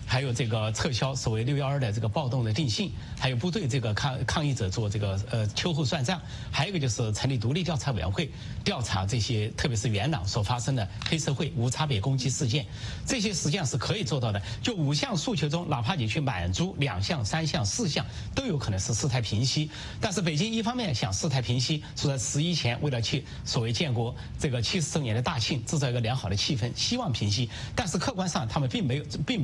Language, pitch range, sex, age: English, 115-155 Hz, male, 30-49